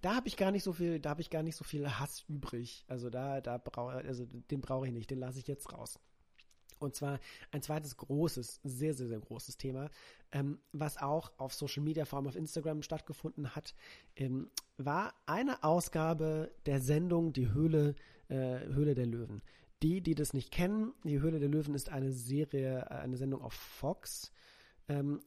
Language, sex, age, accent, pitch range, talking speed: English, male, 40-59, German, 130-155 Hz, 190 wpm